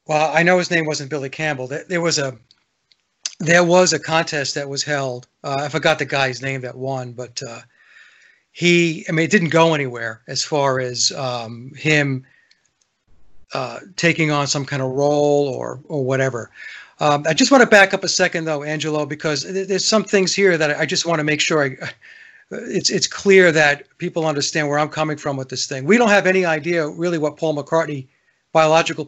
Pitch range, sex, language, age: 140-175 Hz, male, English, 40-59